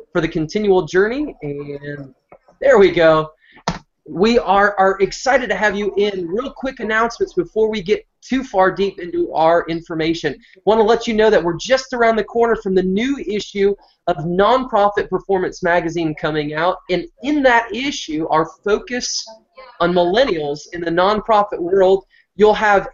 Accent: American